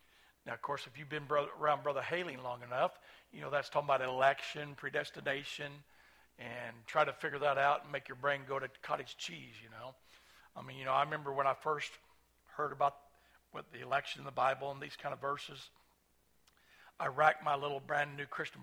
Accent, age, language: American, 60-79, English